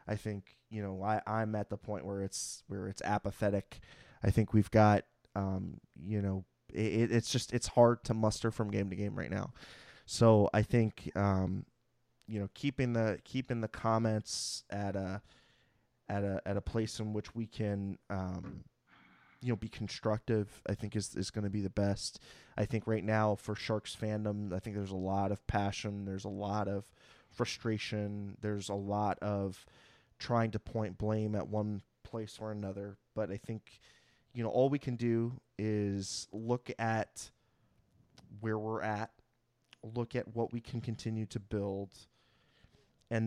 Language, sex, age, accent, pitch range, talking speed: English, male, 20-39, American, 100-115 Hz, 175 wpm